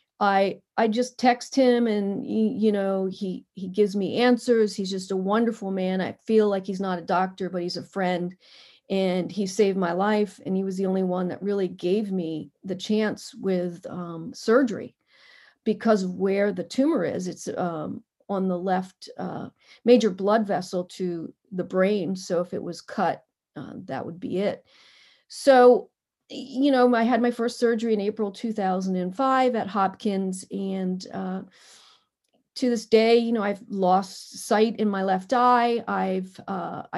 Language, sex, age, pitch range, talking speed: English, female, 40-59, 185-220 Hz, 175 wpm